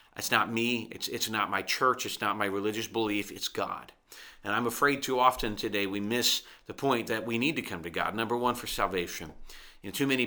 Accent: American